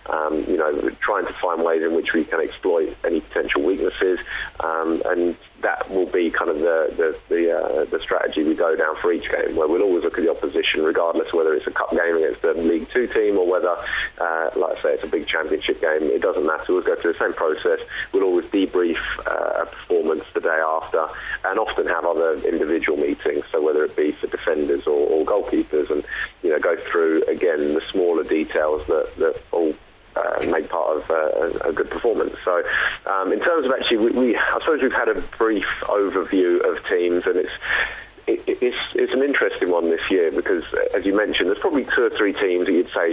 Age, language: 30-49, English